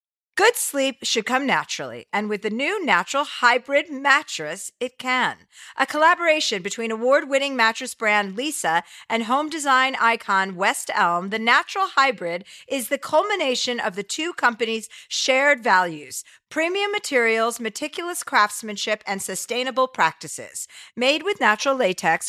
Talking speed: 135 wpm